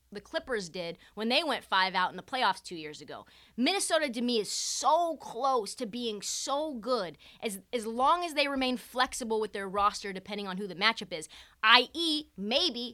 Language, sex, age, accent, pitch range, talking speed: English, female, 20-39, American, 205-270 Hz, 195 wpm